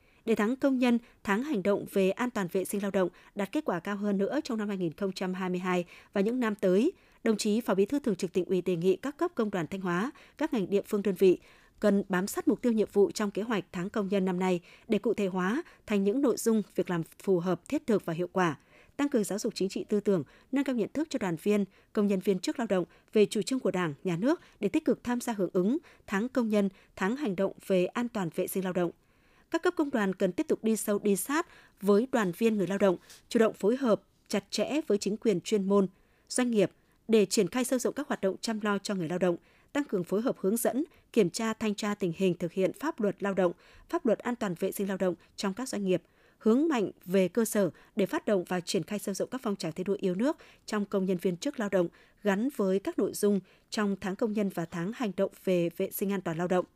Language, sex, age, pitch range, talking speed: Vietnamese, female, 20-39, 185-225 Hz, 265 wpm